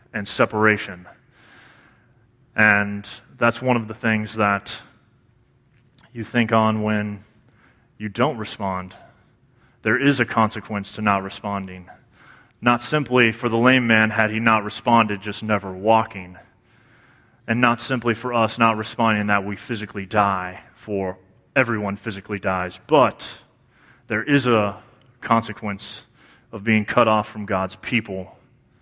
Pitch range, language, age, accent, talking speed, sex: 100-120 Hz, English, 30-49, American, 130 wpm, male